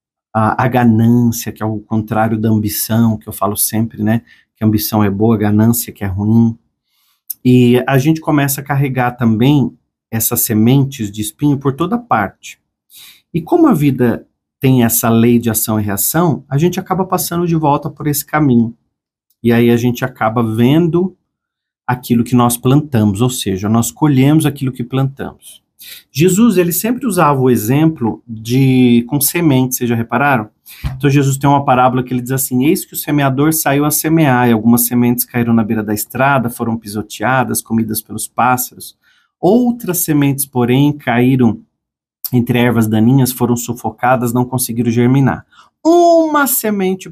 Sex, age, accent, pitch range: male, 40-59, Brazilian, 115-145 Hz